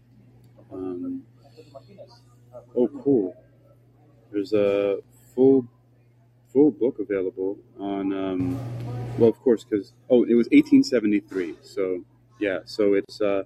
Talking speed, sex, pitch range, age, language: 85 wpm, male, 105-120 Hz, 30-49, English